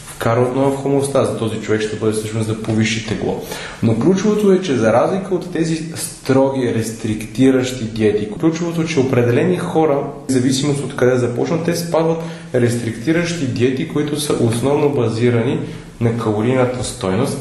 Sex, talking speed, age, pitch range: male, 150 wpm, 30-49, 110-150 Hz